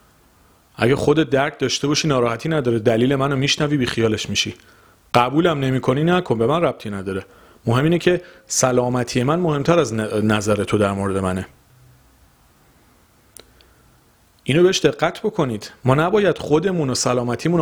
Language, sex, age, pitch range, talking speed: Persian, male, 40-59, 115-170 Hz, 135 wpm